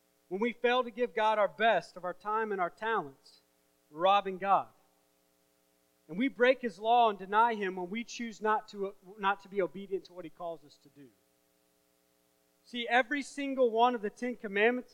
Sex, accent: male, American